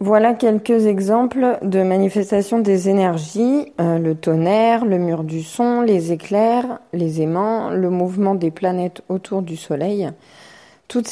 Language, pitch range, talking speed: French, 165-215 Hz, 140 wpm